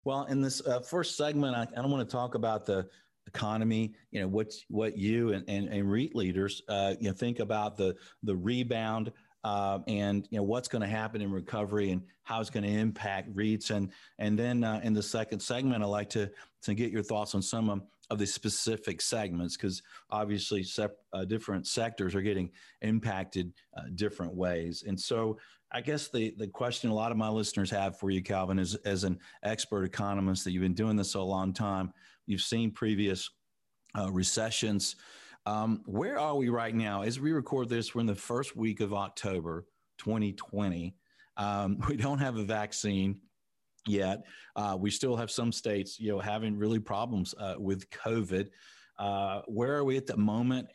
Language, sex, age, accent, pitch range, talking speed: English, male, 40-59, American, 100-115 Hz, 195 wpm